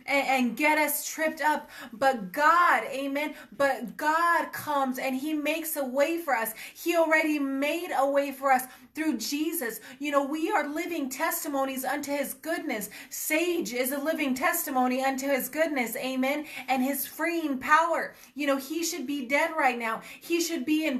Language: English